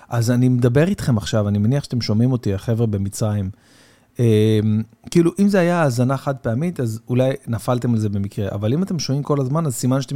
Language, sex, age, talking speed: Hebrew, male, 40-59, 200 wpm